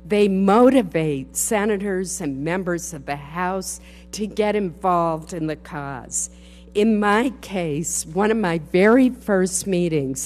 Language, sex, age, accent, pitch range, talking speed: English, female, 50-69, American, 145-185 Hz, 135 wpm